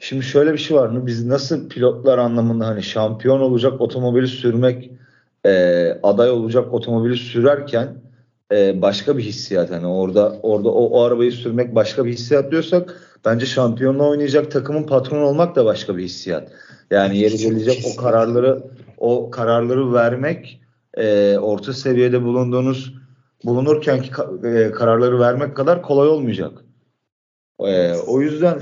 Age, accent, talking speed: 40-59, native, 140 wpm